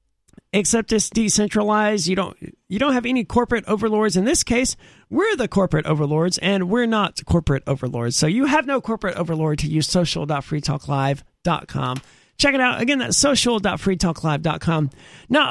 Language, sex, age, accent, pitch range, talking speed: English, male, 40-59, American, 170-245 Hz, 150 wpm